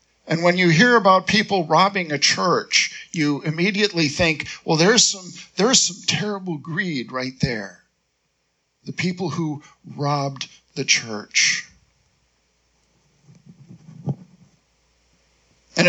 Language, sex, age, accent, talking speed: English, male, 50-69, American, 105 wpm